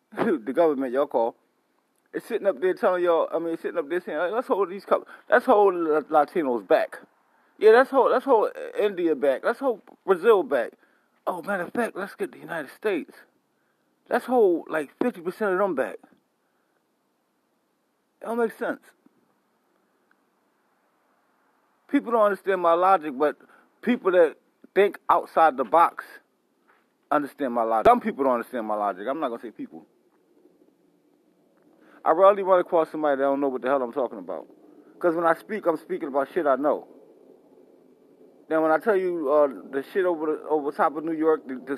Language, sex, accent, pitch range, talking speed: English, male, American, 170-280 Hz, 175 wpm